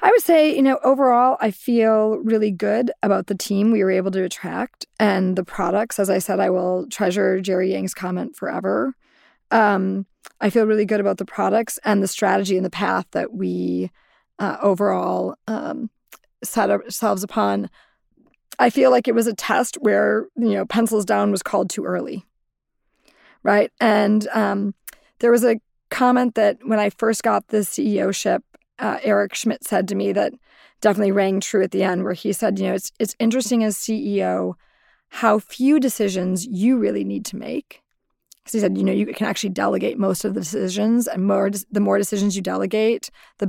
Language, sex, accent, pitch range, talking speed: English, female, American, 195-230 Hz, 190 wpm